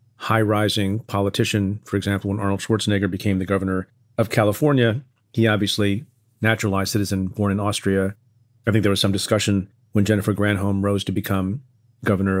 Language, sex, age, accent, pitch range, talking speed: English, male, 40-59, American, 100-120 Hz, 160 wpm